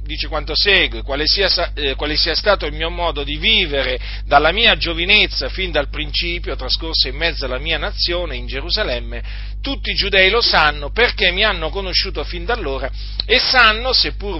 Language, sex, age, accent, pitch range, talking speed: Italian, male, 40-59, native, 125-185 Hz, 180 wpm